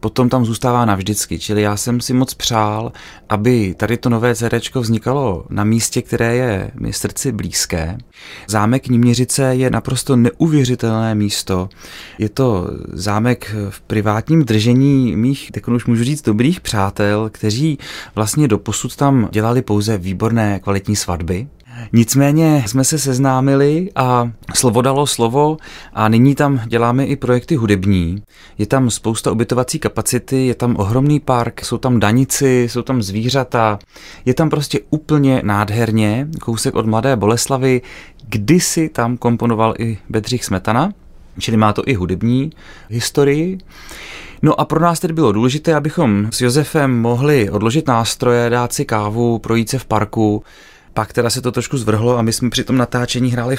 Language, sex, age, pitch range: Czech, male, 30-49, 105-130 Hz